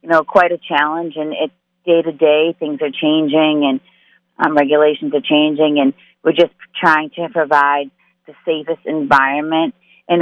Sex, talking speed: female, 160 wpm